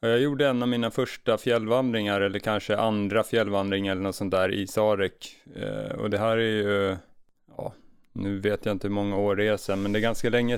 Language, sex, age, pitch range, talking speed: Swedish, male, 30-49, 100-115 Hz, 215 wpm